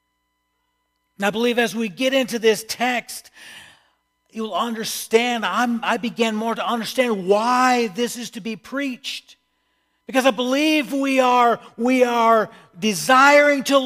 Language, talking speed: English, 130 wpm